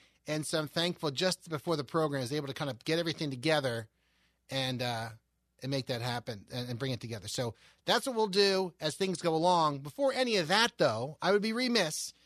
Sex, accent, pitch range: male, American, 140-190 Hz